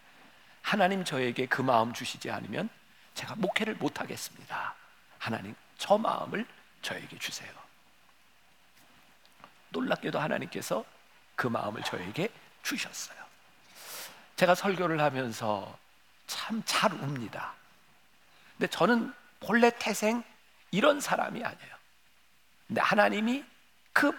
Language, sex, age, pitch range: Korean, male, 50-69, 140-225 Hz